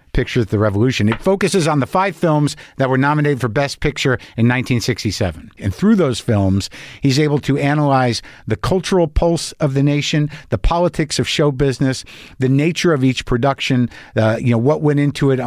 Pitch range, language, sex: 115-150 Hz, English, male